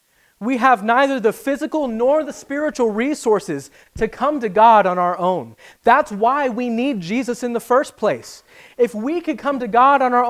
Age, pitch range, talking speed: 30-49, 190-255 Hz, 190 wpm